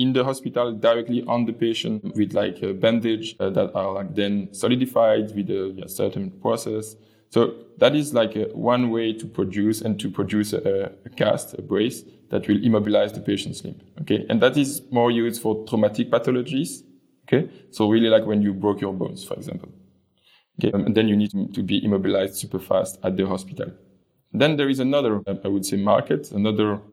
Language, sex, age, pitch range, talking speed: English, male, 20-39, 100-125 Hz, 195 wpm